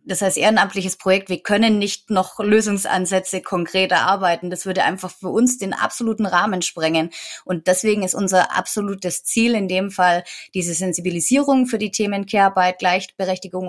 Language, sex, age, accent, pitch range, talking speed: German, female, 20-39, German, 175-200 Hz, 160 wpm